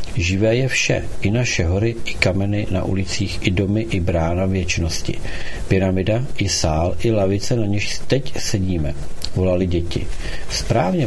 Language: Czech